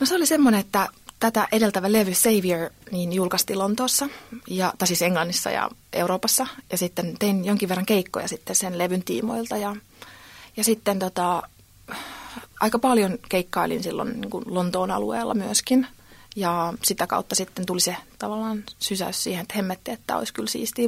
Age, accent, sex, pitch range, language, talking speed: 30-49, native, female, 185-230 Hz, Finnish, 160 wpm